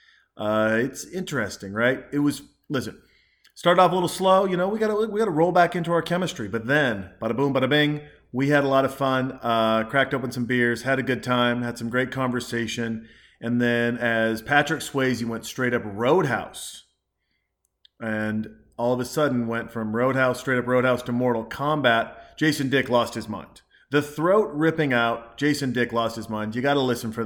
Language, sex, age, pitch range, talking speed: English, male, 40-59, 115-140 Hz, 205 wpm